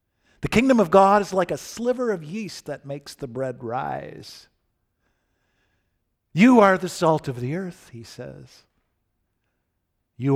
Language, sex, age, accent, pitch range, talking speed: English, male, 50-69, American, 110-150 Hz, 145 wpm